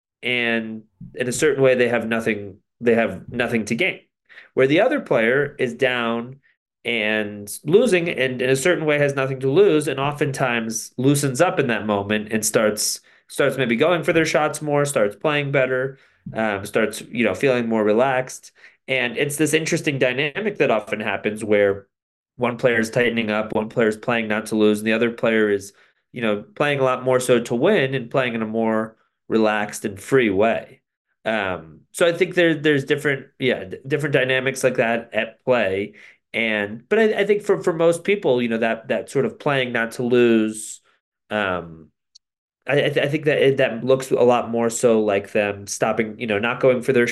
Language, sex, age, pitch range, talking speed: English, male, 30-49, 110-140 Hz, 200 wpm